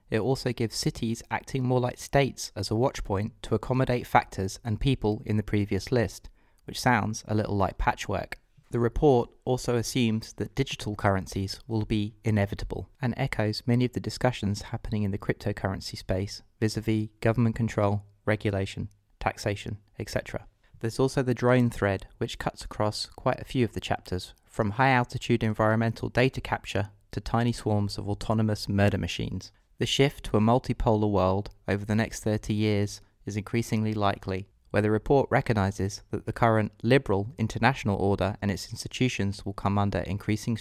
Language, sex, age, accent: English, male, 20-39, British